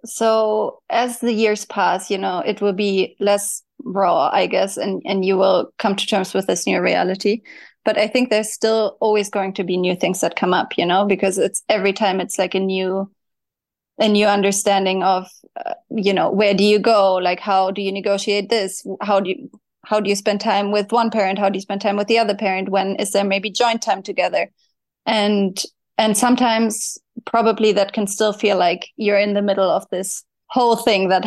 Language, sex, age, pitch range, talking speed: English, female, 20-39, 195-220 Hz, 215 wpm